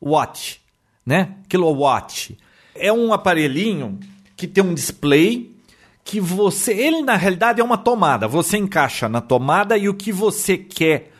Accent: Brazilian